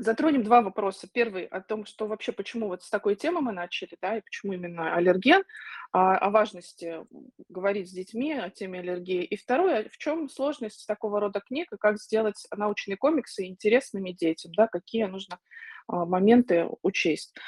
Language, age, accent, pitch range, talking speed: Russian, 20-39, native, 190-240 Hz, 170 wpm